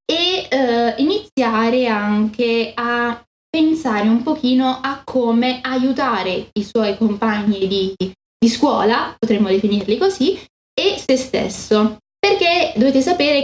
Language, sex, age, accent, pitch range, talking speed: Italian, female, 10-29, native, 210-245 Hz, 115 wpm